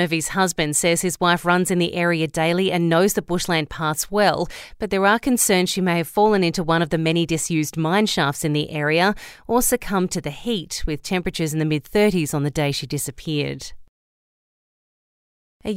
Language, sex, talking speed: English, female, 195 wpm